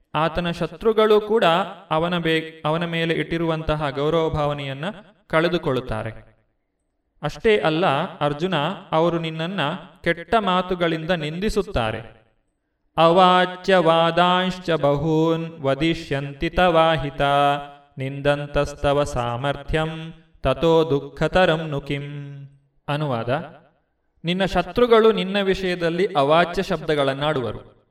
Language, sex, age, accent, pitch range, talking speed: Kannada, male, 30-49, native, 140-175 Hz, 75 wpm